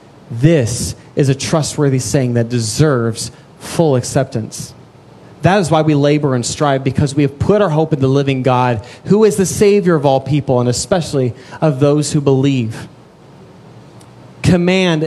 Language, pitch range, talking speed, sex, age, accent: English, 135-180 Hz, 160 wpm, male, 30-49, American